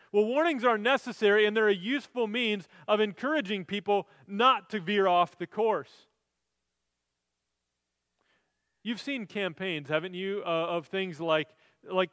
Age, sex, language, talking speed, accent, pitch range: 30-49, male, English, 140 wpm, American, 170-235 Hz